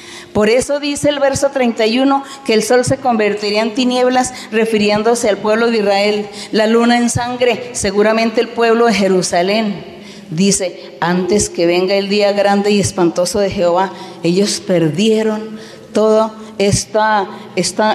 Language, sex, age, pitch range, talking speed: Spanish, female, 40-59, 180-215 Hz, 145 wpm